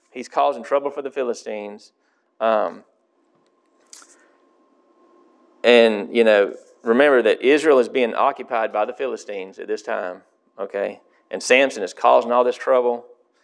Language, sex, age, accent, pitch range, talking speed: English, male, 30-49, American, 345-470 Hz, 135 wpm